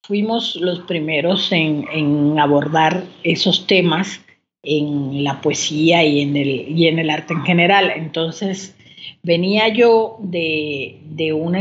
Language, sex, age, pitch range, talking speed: Spanish, female, 40-59, 150-190 Hz, 135 wpm